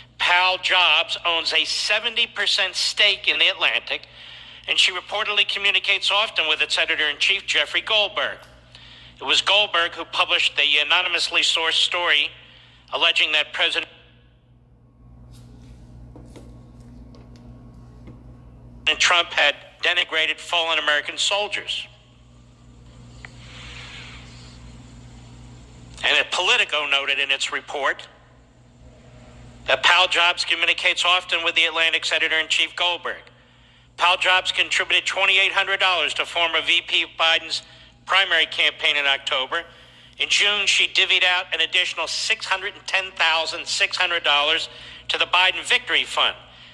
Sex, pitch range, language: male, 130-185 Hz, English